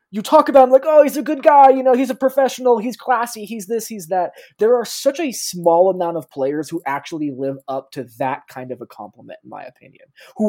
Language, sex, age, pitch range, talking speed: English, male, 20-39, 155-225 Hz, 245 wpm